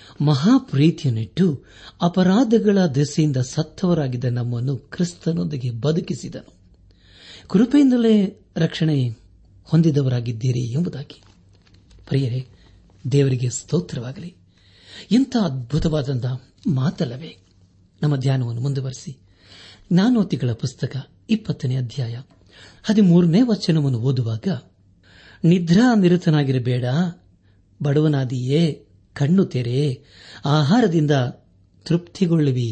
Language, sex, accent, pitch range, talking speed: Kannada, male, native, 115-170 Hz, 60 wpm